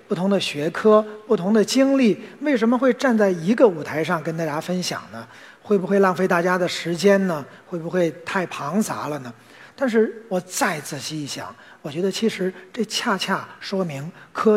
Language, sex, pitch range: Chinese, male, 170-220 Hz